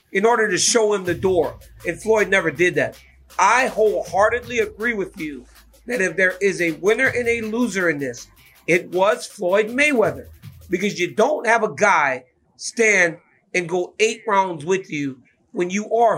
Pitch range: 180-230 Hz